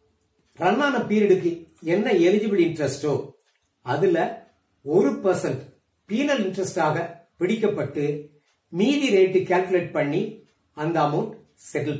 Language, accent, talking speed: Tamil, native, 95 wpm